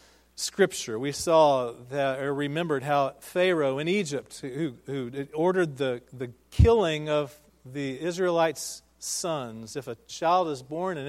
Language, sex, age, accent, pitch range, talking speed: English, male, 40-59, American, 120-160 Hz, 140 wpm